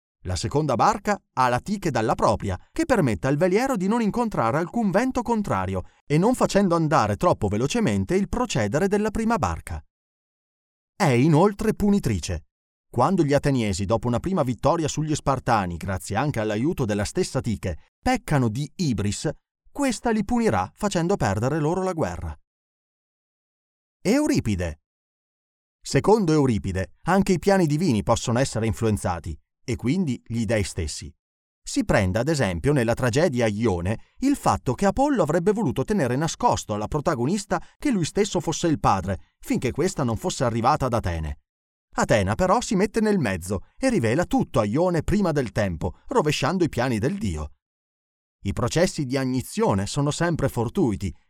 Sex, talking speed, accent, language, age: male, 150 wpm, native, Italian, 30-49